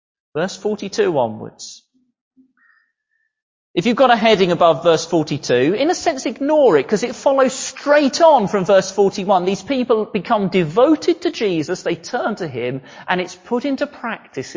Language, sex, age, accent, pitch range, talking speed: English, male, 40-59, British, 190-300 Hz, 160 wpm